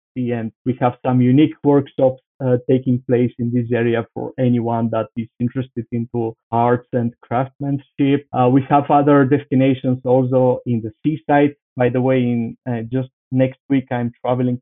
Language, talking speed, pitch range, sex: English, 165 wpm, 120-140 Hz, male